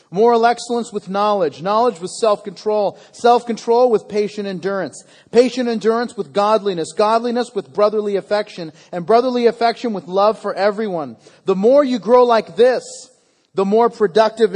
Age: 40-59